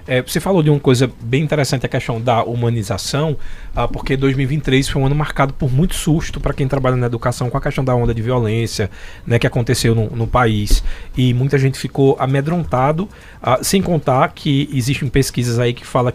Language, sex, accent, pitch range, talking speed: Portuguese, male, Brazilian, 125-160 Hz, 200 wpm